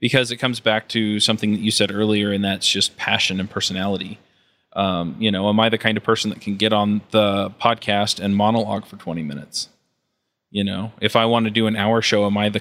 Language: English